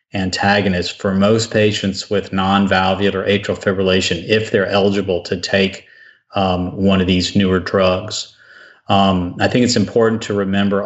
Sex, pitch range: male, 95-105 Hz